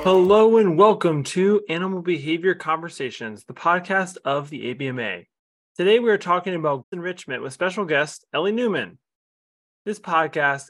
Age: 20-39